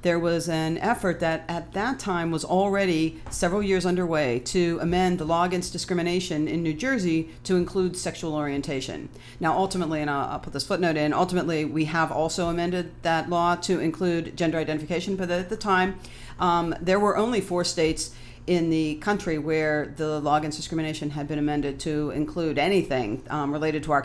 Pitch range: 150-175 Hz